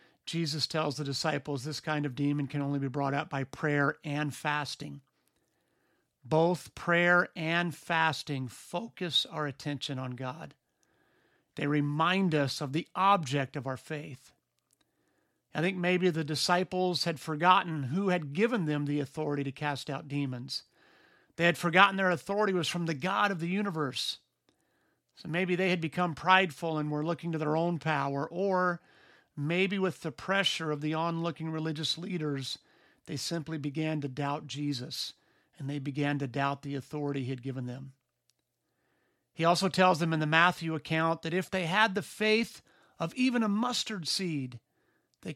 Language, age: English, 50-69